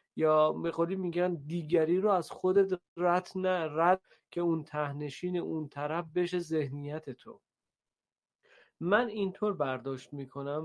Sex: male